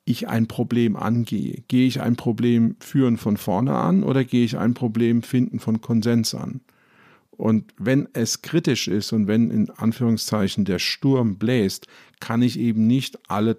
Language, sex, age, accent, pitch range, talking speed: German, male, 50-69, German, 105-125 Hz, 170 wpm